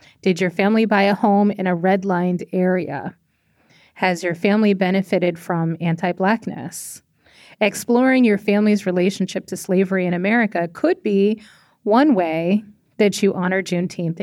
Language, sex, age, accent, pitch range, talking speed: English, female, 30-49, American, 185-225 Hz, 135 wpm